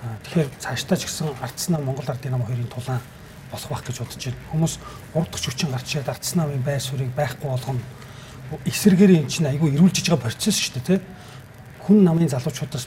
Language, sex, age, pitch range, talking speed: English, male, 40-59, 130-170 Hz, 145 wpm